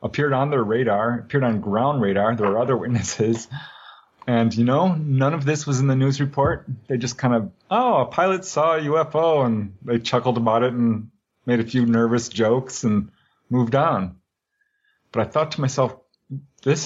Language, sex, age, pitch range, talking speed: English, male, 30-49, 110-140 Hz, 190 wpm